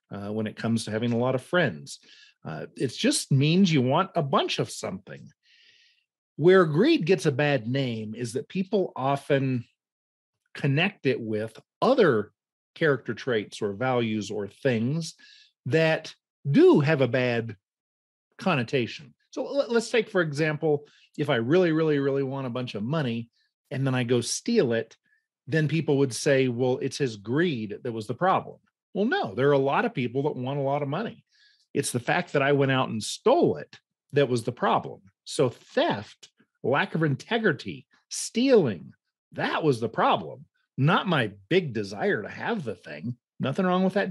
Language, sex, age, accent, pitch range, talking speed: English, male, 40-59, American, 125-195 Hz, 175 wpm